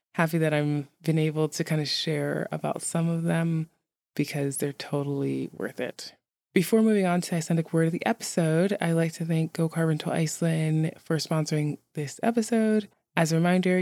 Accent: American